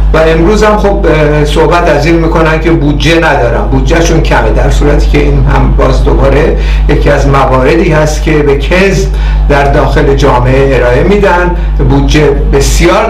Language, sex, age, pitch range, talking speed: Persian, male, 60-79, 150-180 Hz, 150 wpm